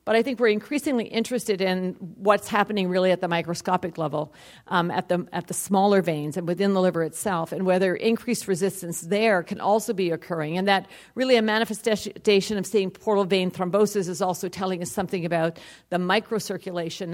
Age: 50-69